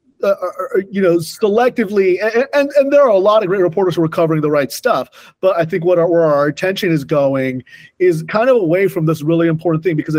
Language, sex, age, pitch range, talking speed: English, male, 30-49, 140-175 Hz, 235 wpm